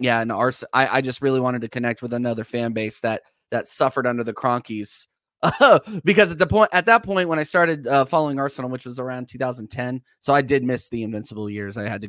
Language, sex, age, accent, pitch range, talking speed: English, male, 20-39, American, 105-130 Hz, 235 wpm